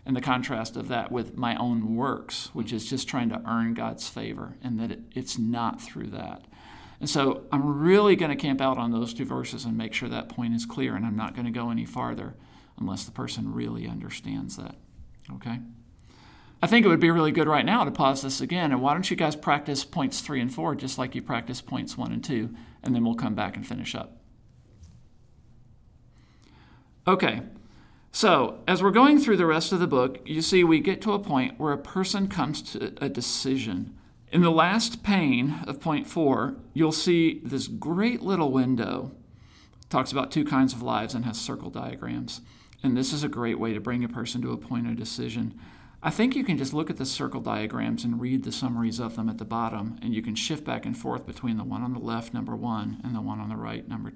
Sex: male